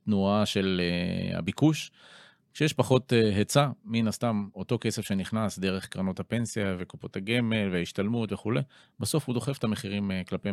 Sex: male